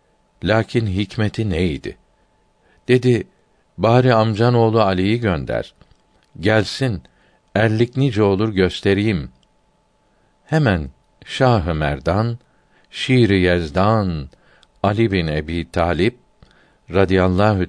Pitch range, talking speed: 85-110 Hz, 80 wpm